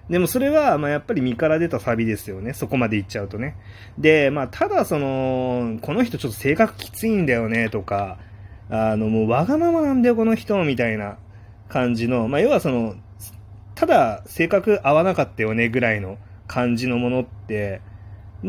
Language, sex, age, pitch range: Japanese, male, 30-49, 105-160 Hz